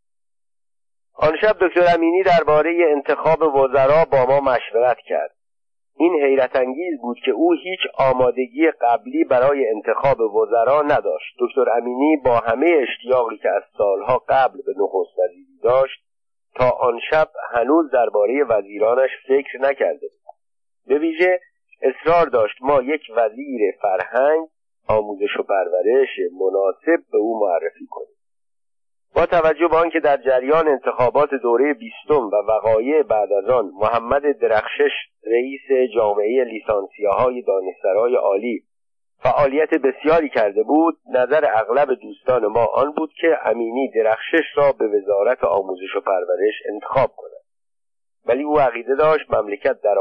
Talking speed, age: 130 wpm, 50-69